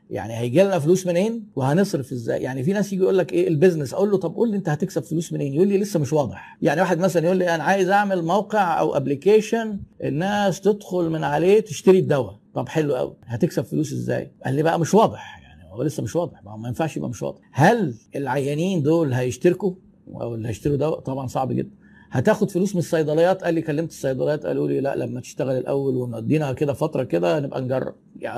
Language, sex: Arabic, male